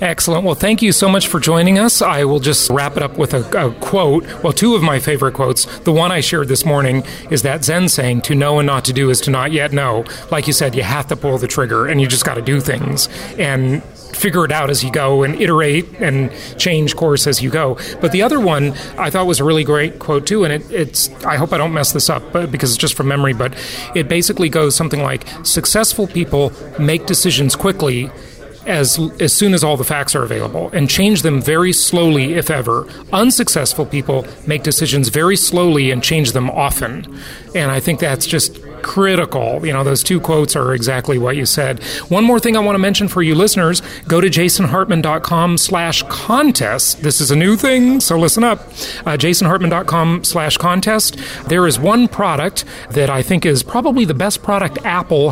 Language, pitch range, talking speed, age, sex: English, 140-180 Hz, 215 wpm, 30-49, male